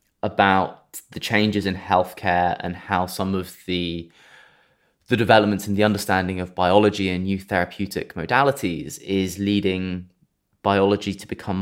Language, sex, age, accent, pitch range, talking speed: English, male, 20-39, British, 90-100 Hz, 135 wpm